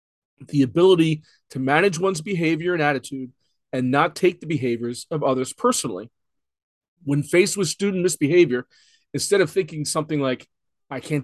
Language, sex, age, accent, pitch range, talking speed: English, male, 30-49, American, 130-180 Hz, 150 wpm